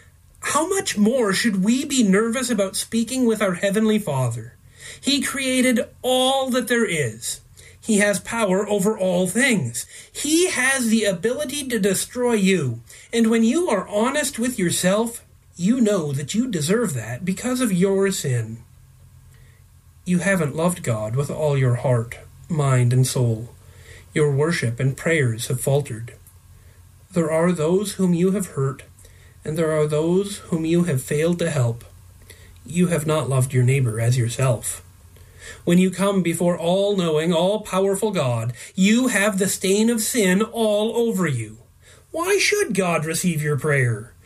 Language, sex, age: English, male, 40-59